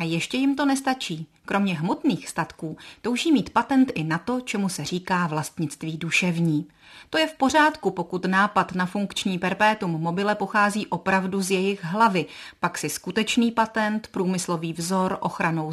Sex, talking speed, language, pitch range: female, 155 wpm, Czech, 170-220 Hz